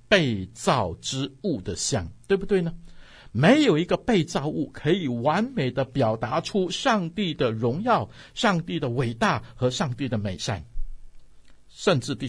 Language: Chinese